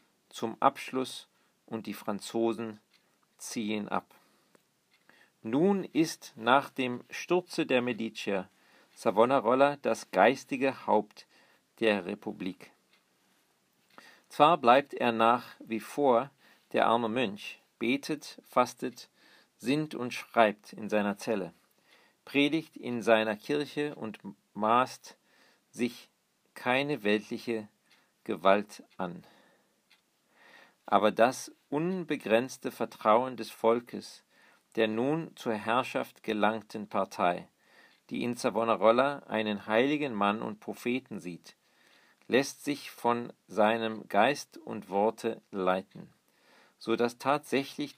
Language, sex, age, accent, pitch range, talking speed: English, male, 50-69, German, 105-130 Hz, 100 wpm